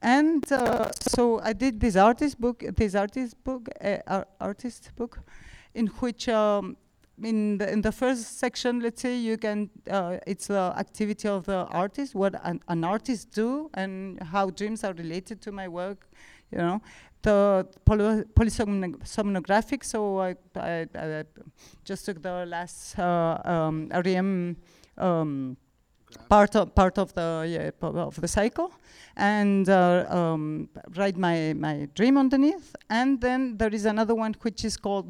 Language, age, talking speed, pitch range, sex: English, 40-59, 155 wpm, 185-225 Hz, female